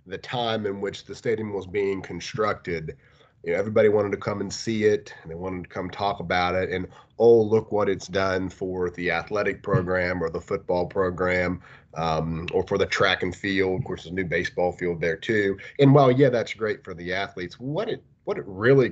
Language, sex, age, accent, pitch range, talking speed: English, male, 30-49, American, 90-120 Hz, 220 wpm